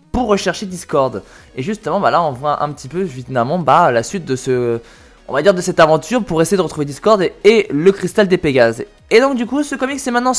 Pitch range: 140-215 Hz